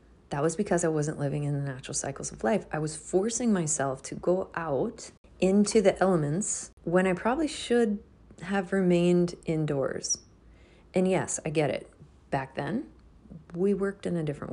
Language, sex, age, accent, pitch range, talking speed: English, female, 30-49, American, 150-185 Hz, 170 wpm